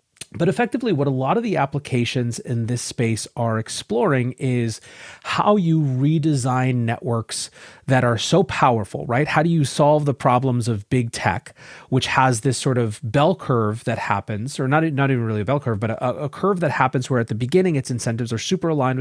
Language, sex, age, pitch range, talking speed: English, male, 30-49, 110-140 Hz, 200 wpm